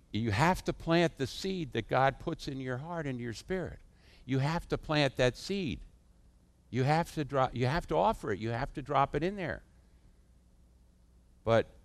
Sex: male